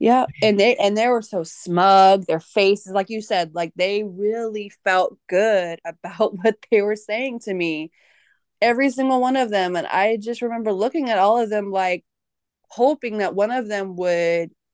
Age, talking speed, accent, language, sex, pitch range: 20-39, 185 wpm, American, English, female, 170-210 Hz